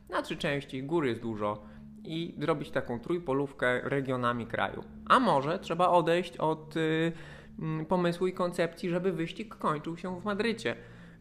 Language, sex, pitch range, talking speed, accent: Polish, male, 130-175 Hz, 145 wpm, native